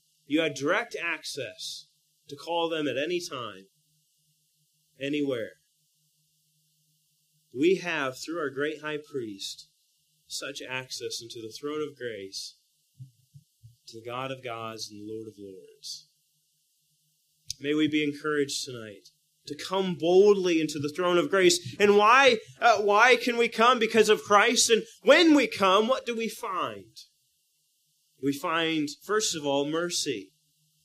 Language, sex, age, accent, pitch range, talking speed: English, male, 30-49, American, 145-170 Hz, 140 wpm